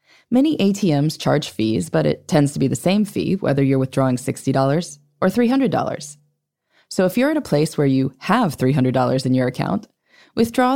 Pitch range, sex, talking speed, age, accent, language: 140-200 Hz, female, 180 wpm, 20-39, American, English